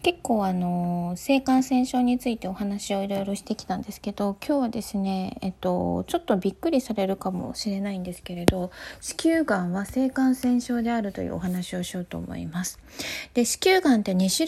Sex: female